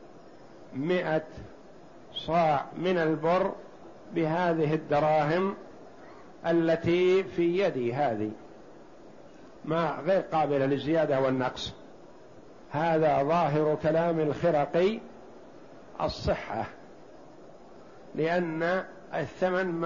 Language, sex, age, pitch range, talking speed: Arabic, male, 50-69, 155-190 Hz, 65 wpm